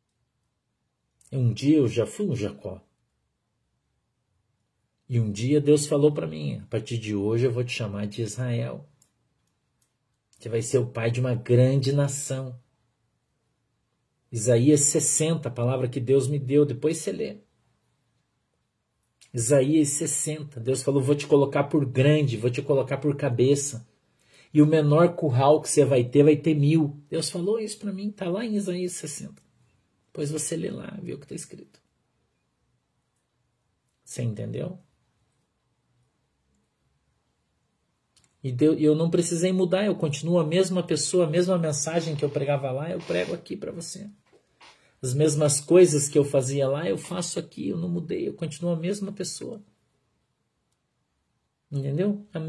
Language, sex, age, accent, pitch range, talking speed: Portuguese, male, 50-69, Brazilian, 125-165 Hz, 150 wpm